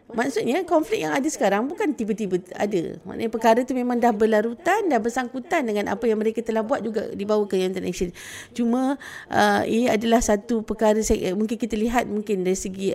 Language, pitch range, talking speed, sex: Malay, 205-260 Hz, 170 wpm, female